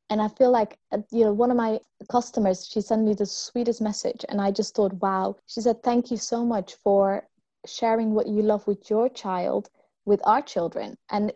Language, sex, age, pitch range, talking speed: English, female, 20-39, 195-225 Hz, 205 wpm